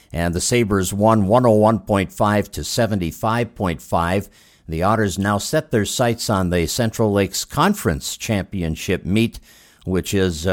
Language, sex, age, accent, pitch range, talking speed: English, male, 50-69, American, 95-130 Hz, 125 wpm